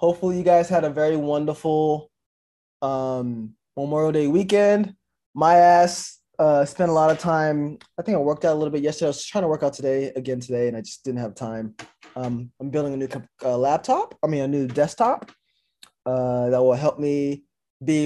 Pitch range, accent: 125-160 Hz, American